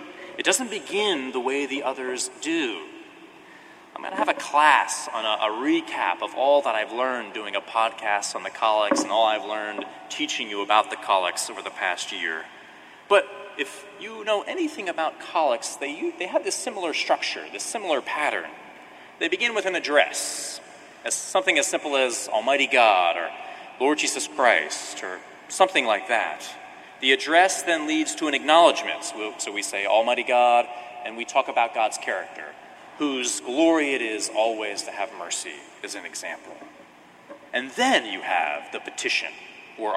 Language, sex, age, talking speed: English, male, 30-49, 170 wpm